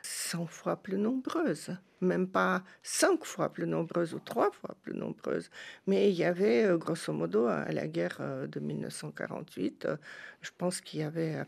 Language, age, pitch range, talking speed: French, 50-69, 185-240 Hz, 165 wpm